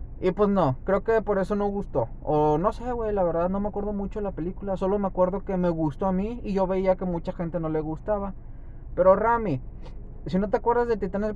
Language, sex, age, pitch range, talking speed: Spanish, male, 20-39, 135-195 Hz, 250 wpm